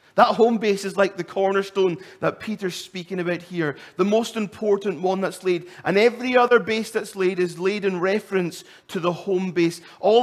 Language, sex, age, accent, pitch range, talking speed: English, male, 30-49, British, 150-195 Hz, 195 wpm